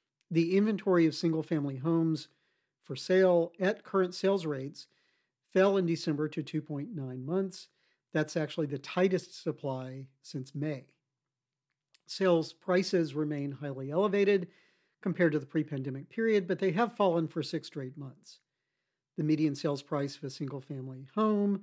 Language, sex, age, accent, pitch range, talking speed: English, male, 50-69, American, 140-180 Hz, 140 wpm